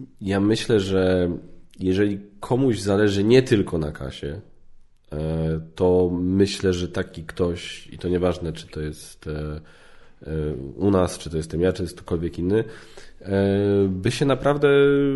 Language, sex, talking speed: Polish, male, 130 wpm